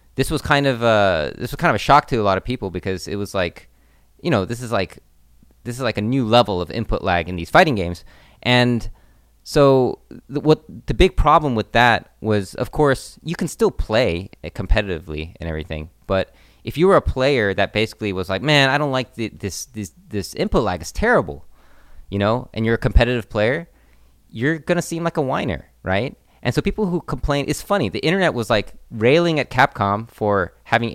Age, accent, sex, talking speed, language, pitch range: 30-49, American, male, 210 wpm, English, 90-130 Hz